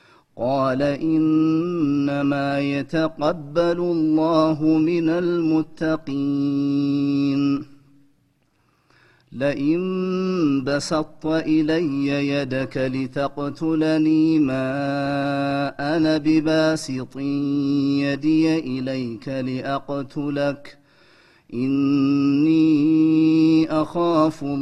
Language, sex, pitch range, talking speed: Amharic, male, 140-160 Hz, 45 wpm